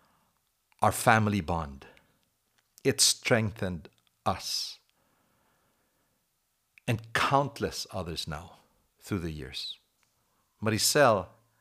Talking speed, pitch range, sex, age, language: 70 wpm, 95-140 Hz, male, 60-79, English